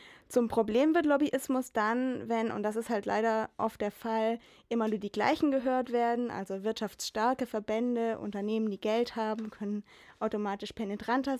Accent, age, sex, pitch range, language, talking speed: German, 20-39, female, 215-240 Hz, German, 160 wpm